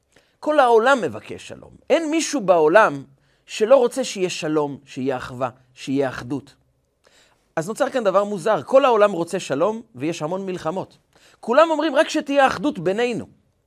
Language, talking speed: Hebrew, 145 wpm